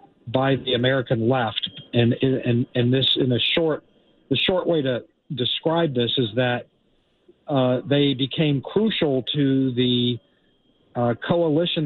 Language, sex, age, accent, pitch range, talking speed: English, male, 50-69, American, 125-150 Hz, 135 wpm